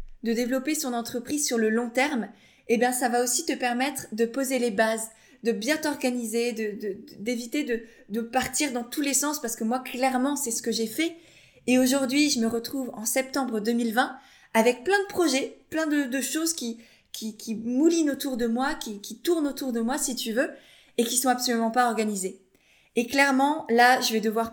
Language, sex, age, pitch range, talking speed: French, female, 20-39, 230-275 Hz, 210 wpm